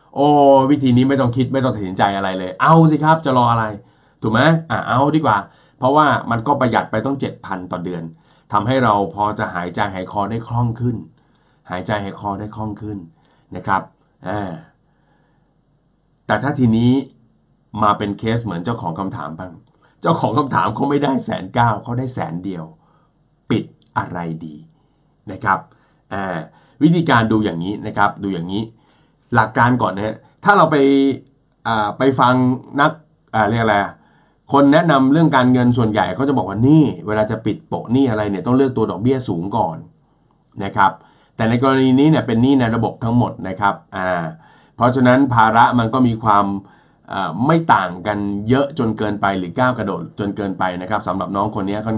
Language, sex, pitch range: Thai, male, 100-135 Hz